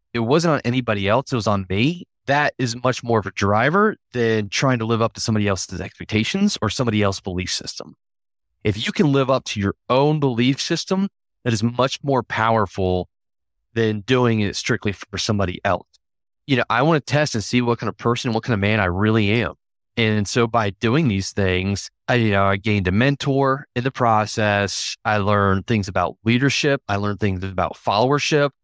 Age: 30-49